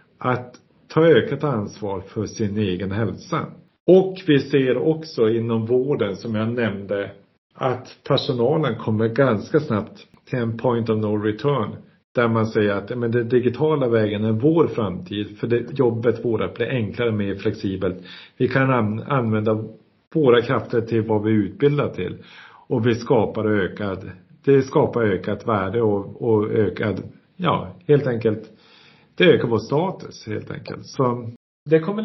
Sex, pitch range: male, 110-145 Hz